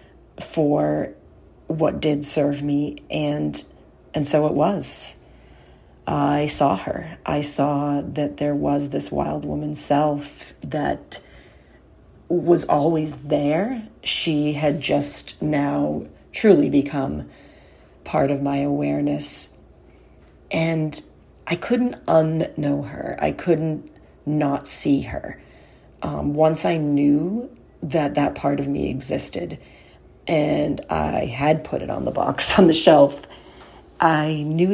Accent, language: American, English